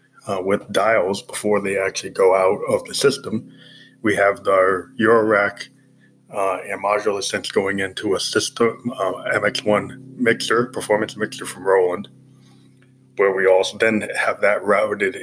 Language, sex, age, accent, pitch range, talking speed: English, male, 20-39, American, 95-115 Hz, 145 wpm